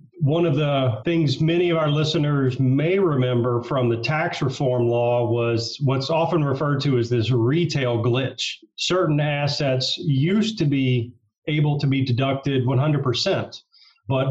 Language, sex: English, male